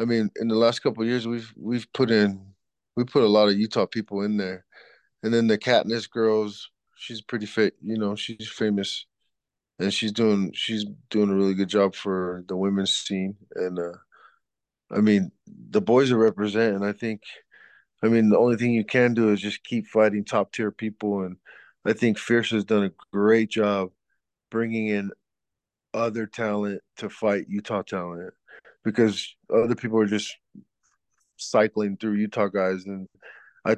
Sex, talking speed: male, 175 wpm